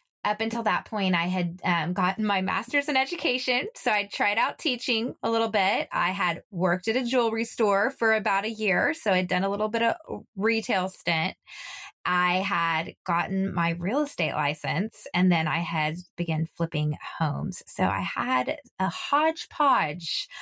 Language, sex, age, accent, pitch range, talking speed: English, female, 20-39, American, 160-195 Hz, 175 wpm